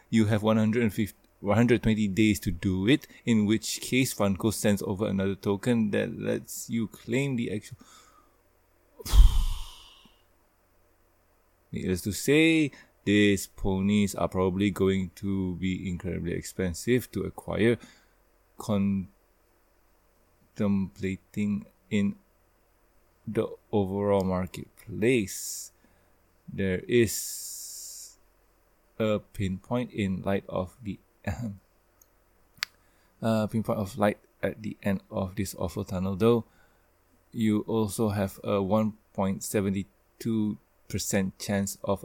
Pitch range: 95-110 Hz